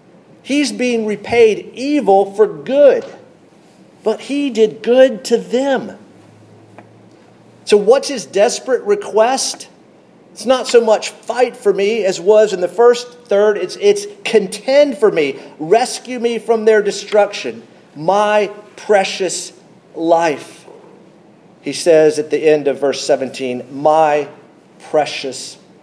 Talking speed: 125 wpm